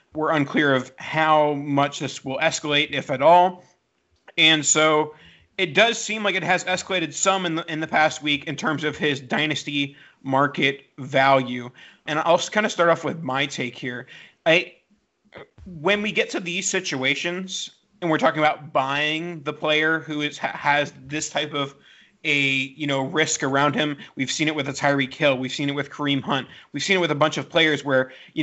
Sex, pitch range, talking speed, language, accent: male, 140-170 Hz, 195 wpm, English, American